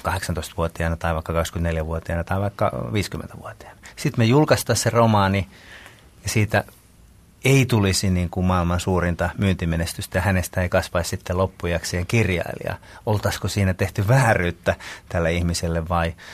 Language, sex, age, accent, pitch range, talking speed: Finnish, male, 30-49, native, 90-115 Hz, 120 wpm